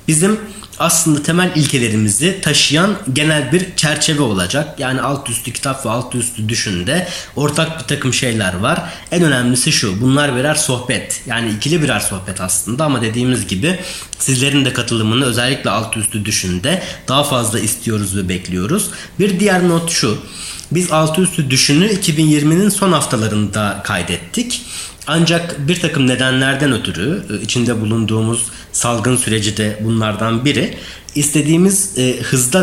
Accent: native